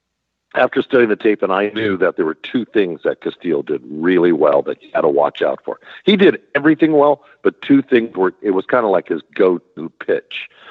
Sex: male